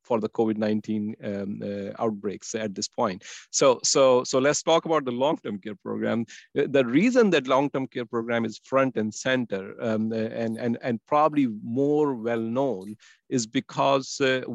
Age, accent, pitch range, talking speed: 50-69, Indian, 115-135 Hz, 165 wpm